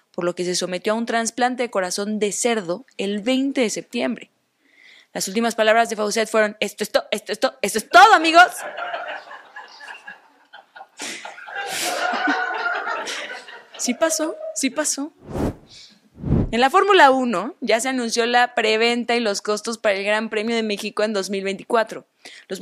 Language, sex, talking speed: Spanish, female, 150 wpm